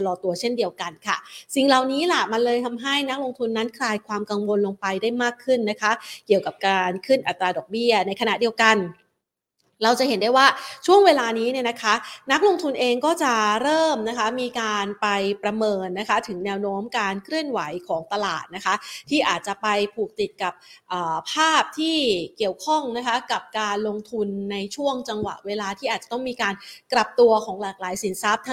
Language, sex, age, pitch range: Thai, female, 30-49, 200-260 Hz